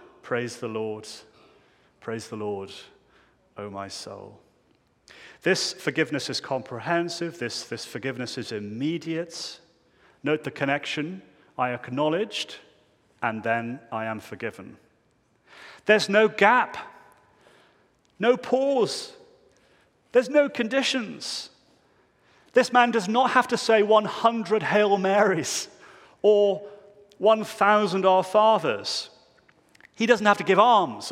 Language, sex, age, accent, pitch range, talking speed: English, male, 40-59, British, 155-215 Hz, 110 wpm